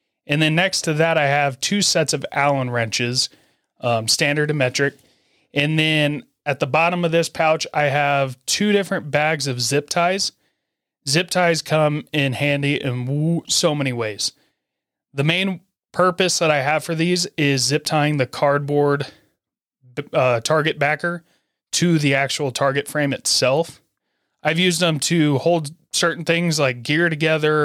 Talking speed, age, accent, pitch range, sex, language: 160 wpm, 30-49, American, 135-165 Hz, male, English